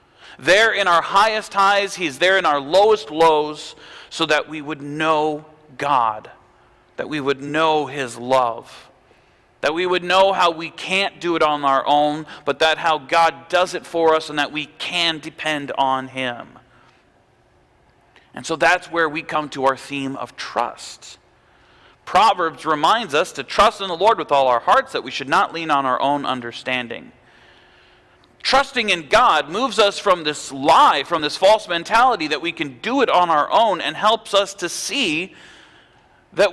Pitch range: 150-205 Hz